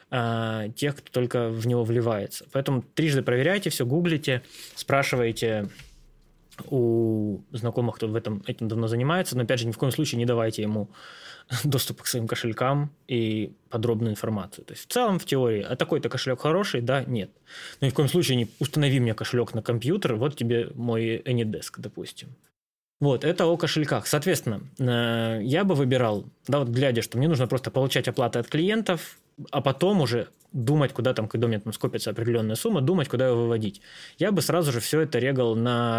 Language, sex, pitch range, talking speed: Russian, male, 115-140 Hz, 180 wpm